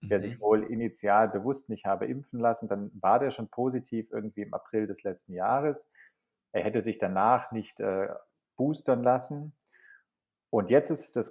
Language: German